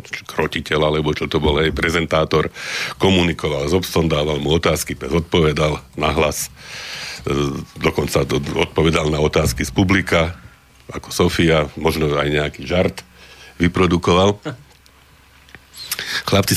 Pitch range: 80-95 Hz